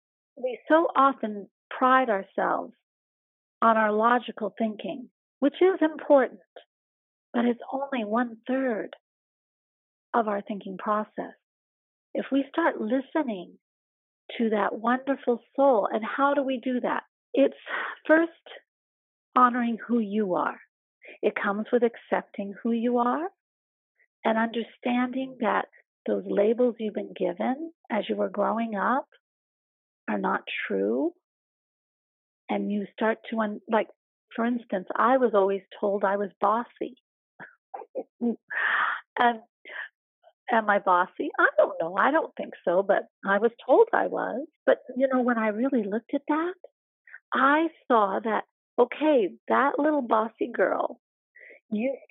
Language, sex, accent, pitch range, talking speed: English, female, American, 215-275 Hz, 130 wpm